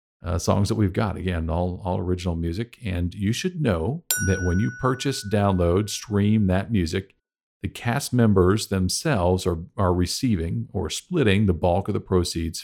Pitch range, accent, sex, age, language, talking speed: 85-105 Hz, American, male, 50-69, English, 170 wpm